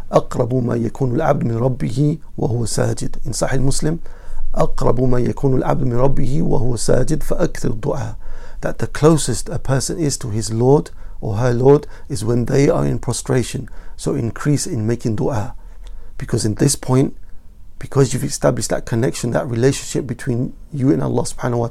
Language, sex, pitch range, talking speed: English, male, 115-135 Hz, 170 wpm